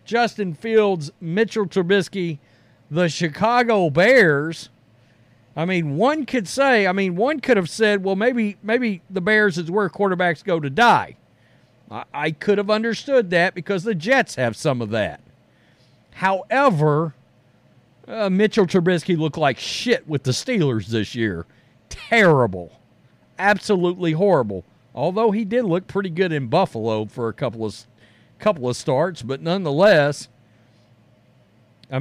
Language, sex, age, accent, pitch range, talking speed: English, male, 50-69, American, 125-200 Hz, 140 wpm